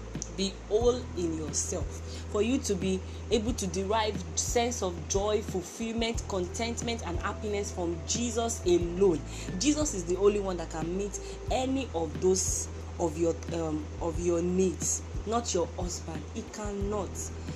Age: 30-49